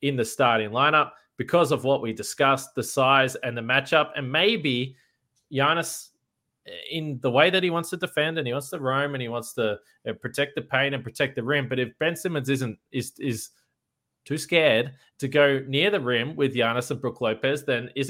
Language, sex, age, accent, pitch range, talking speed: English, male, 20-39, Australian, 115-145 Hz, 210 wpm